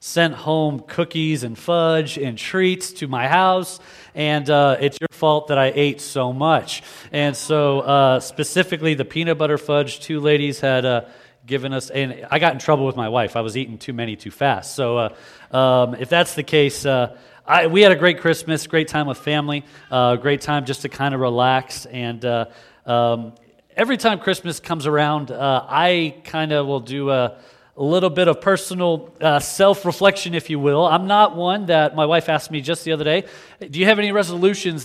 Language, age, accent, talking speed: English, 30-49, American, 200 wpm